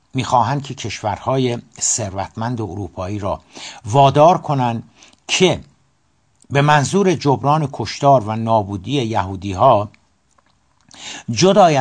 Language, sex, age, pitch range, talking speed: Persian, male, 60-79, 105-140 Hz, 90 wpm